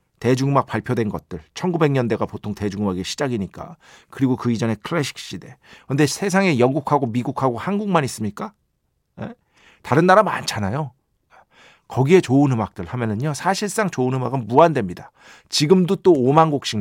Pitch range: 115-175 Hz